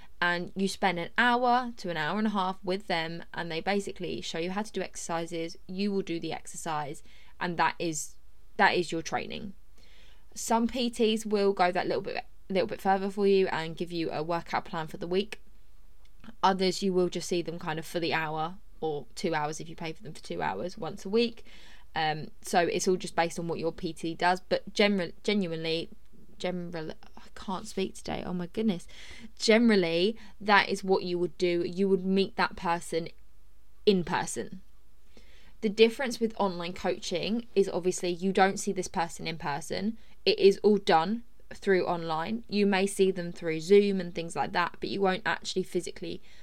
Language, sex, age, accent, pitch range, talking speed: English, female, 20-39, British, 165-200 Hz, 195 wpm